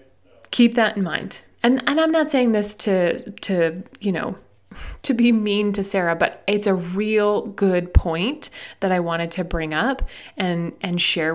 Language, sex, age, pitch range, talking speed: English, female, 30-49, 180-235 Hz, 180 wpm